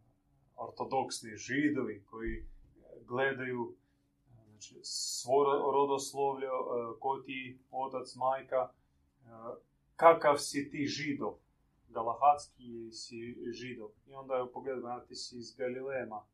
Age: 30-49